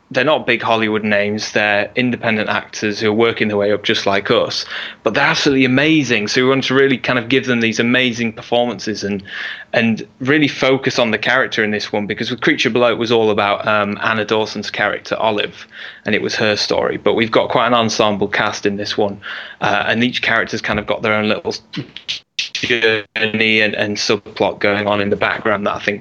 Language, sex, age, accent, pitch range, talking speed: English, male, 20-39, British, 105-120 Hz, 215 wpm